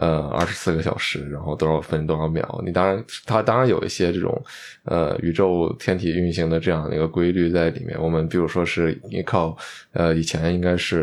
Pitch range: 85-95 Hz